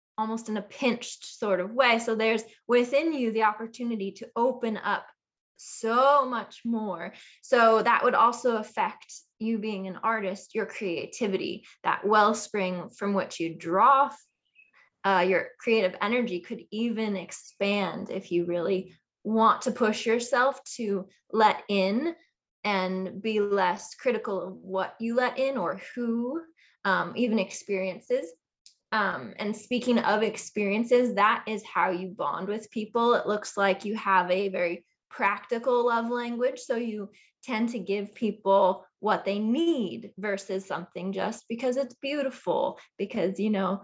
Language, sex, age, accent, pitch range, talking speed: English, female, 20-39, American, 200-245 Hz, 145 wpm